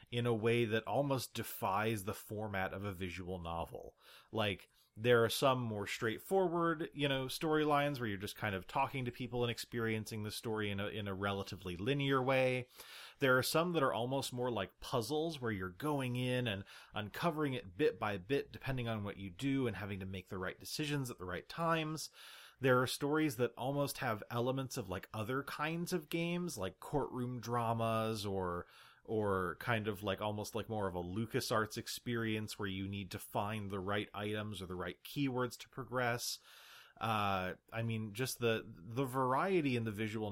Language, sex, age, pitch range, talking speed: English, male, 30-49, 100-130 Hz, 190 wpm